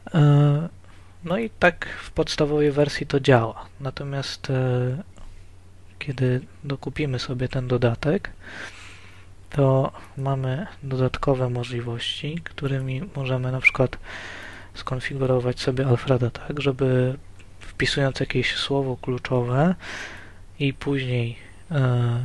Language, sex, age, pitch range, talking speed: Polish, male, 20-39, 115-140 Hz, 90 wpm